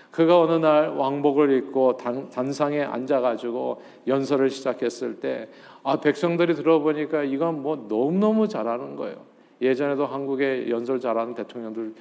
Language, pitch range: Korean, 130-165 Hz